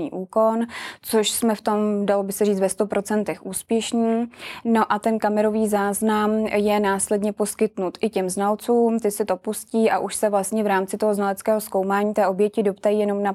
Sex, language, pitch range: female, Czech, 200-220 Hz